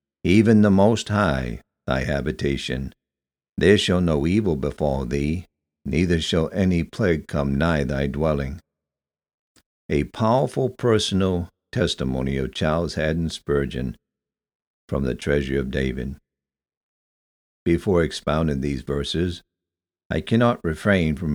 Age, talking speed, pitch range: 60-79, 115 wpm, 70-85 Hz